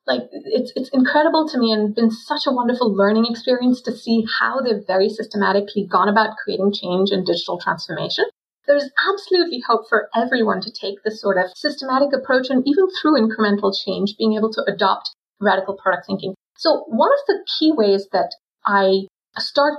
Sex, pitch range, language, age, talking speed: female, 200-245 Hz, English, 30-49, 180 wpm